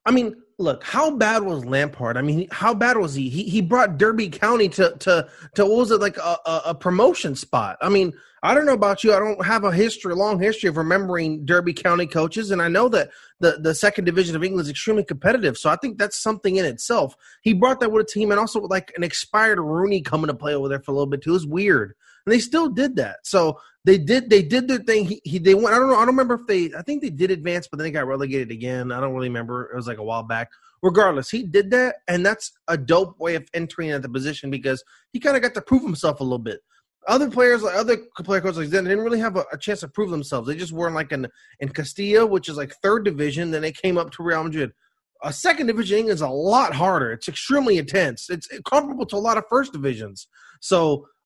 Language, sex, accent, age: English, male, American, 30-49